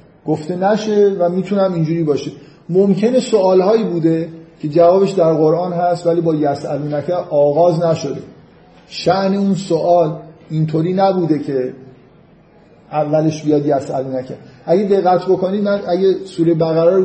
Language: Persian